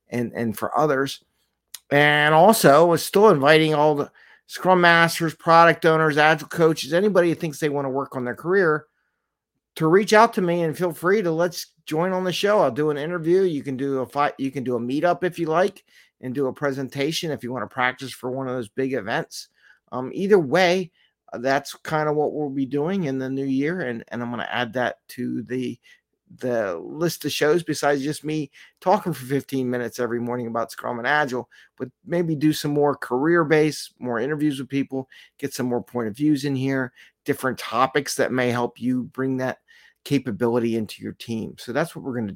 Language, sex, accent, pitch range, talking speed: English, male, American, 125-160 Hz, 215 wpm